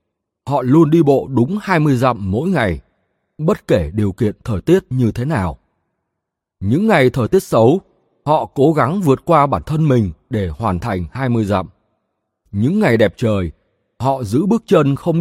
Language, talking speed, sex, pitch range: Vietnamese, 180 wpm, male, 100-150 Hz